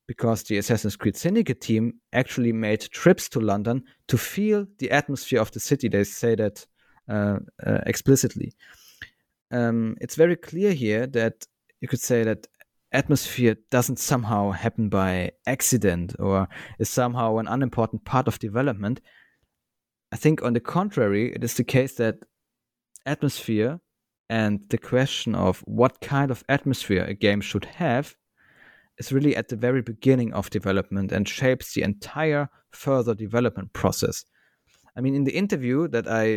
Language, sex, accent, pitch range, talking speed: English, male, German, 110-135 Hz, 155 wpm